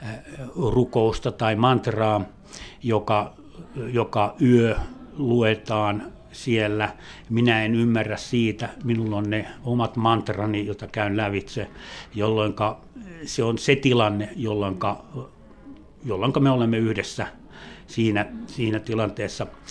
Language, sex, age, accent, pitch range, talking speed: Finnish, male, 60-79, native, 110-140 Hz, 95 wpm